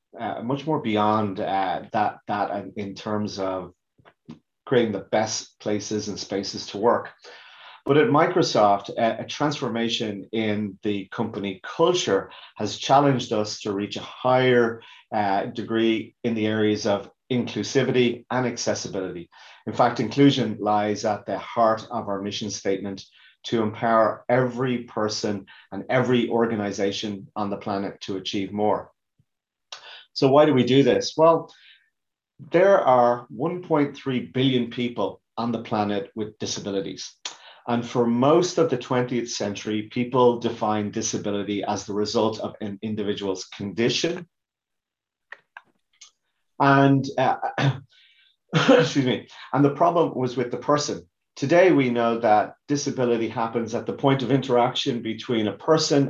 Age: 30-49